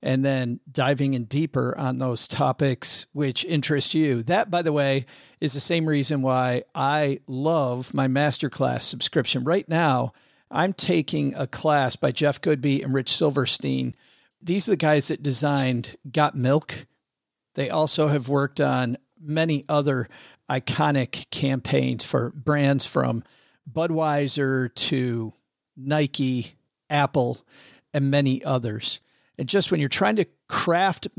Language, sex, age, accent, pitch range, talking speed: English, male, 50-69, American, 130-155 Hz, 135 wpm